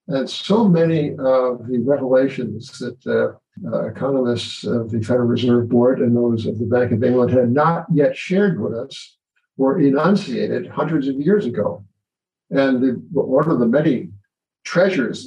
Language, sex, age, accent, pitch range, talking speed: English, male, 60-79, American, 120-140 Hz, 160 wpm